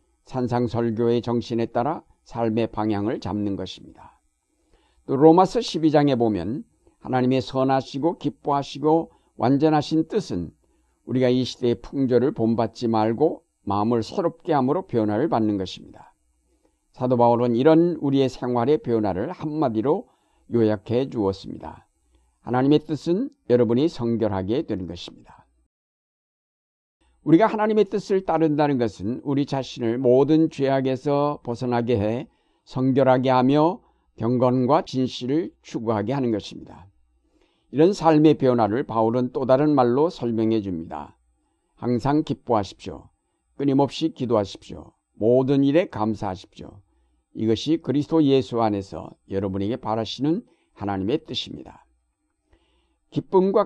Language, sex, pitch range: Korean, male, 110-145 Hz